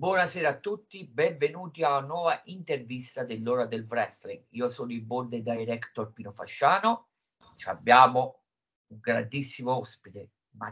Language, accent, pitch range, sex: Italian, native, 125-165 Hz, male